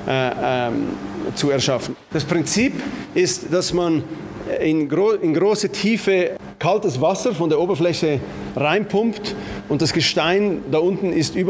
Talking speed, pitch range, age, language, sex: 135 wpm, 140-180 Hz, 30-49, German, male